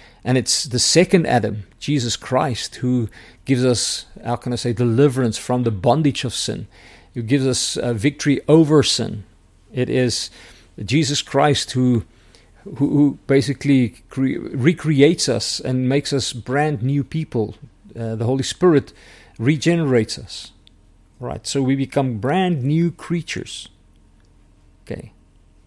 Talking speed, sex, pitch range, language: 130 wpm, male, 105-140 Hz, English